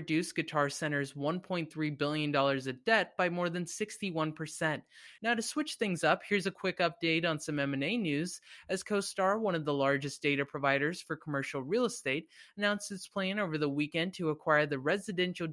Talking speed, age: 180 wpm, 20-39